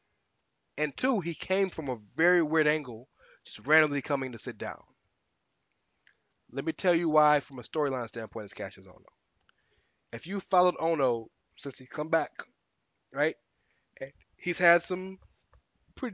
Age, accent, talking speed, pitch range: 20-39, American, 150 wpm, 130-175 Hz